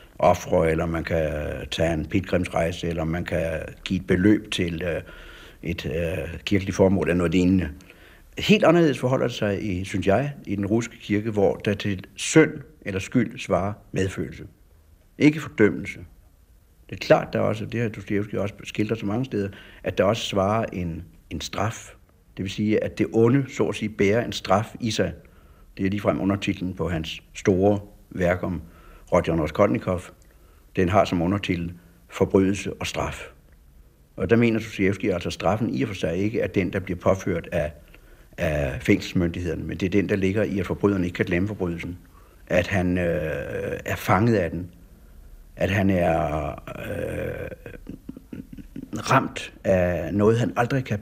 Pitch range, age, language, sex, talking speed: 85-105 Hz, 60-79, Danish, male, 170 wpm